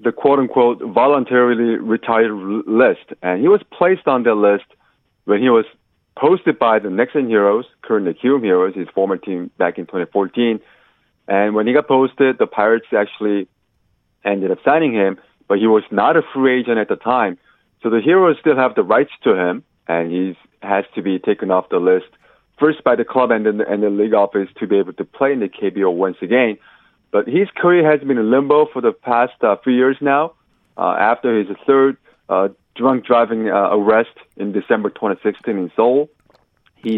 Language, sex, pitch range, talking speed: English, male, 105-135 Hz, 190 wpm